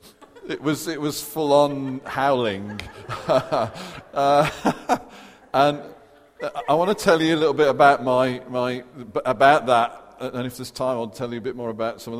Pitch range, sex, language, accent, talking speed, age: 120-145 Hz, male, English, British, 180 wpm, 50-69